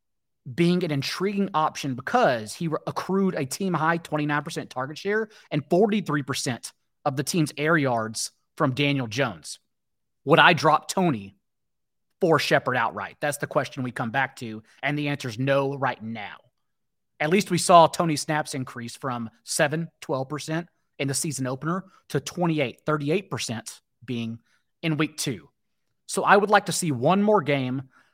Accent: American